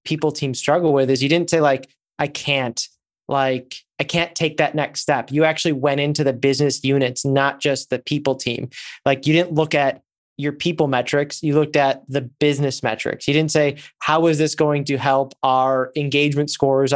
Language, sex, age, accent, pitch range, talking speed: English, male, 20-39, American, 130-145 Hz, 200 wpm